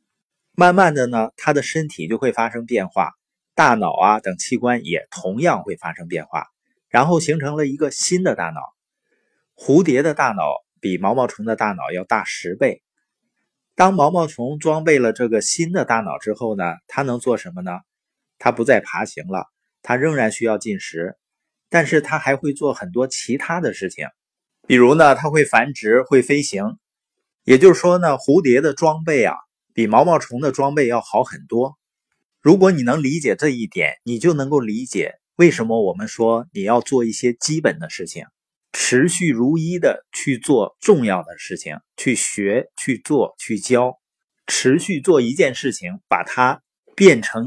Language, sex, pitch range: Chinese, male, 120-165 Hz